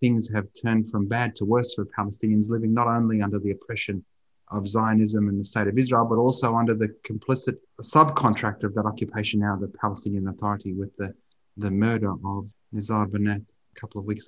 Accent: Australian